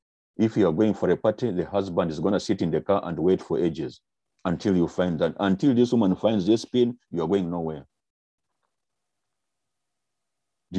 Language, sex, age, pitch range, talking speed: English, male, 50-69, 95-135 Hz, 195 wpm